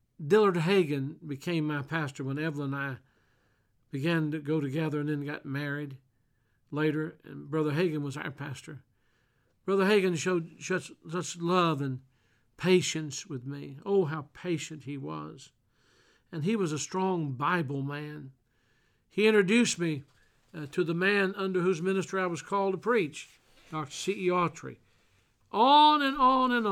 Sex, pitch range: male, 140-180 Hz